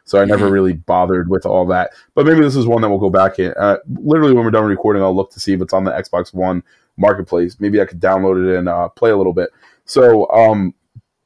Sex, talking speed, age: male, 255 wpm, 20-39